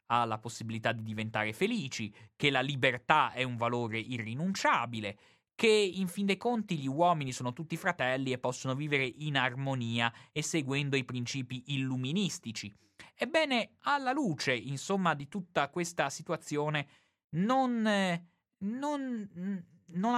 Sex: male